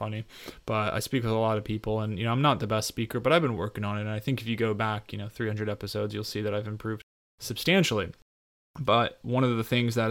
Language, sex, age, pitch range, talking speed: English, male, 20-39, 105-120 Hz, 275 wpm